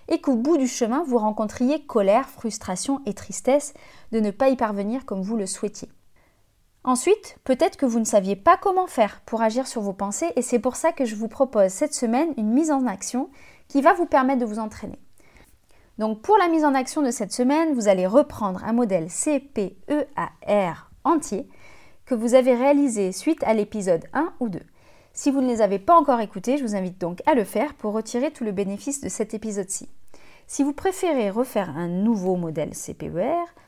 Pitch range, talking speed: 210-290 Hz, 200 wpm